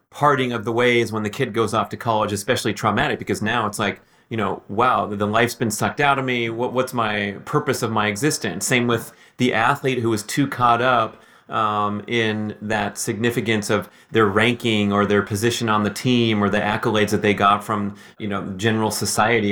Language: English